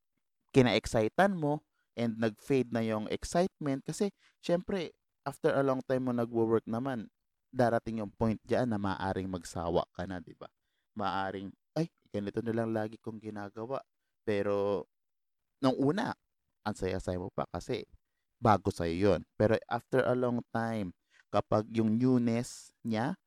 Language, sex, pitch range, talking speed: Filipino, male, 110-150 Hz, 145 wpm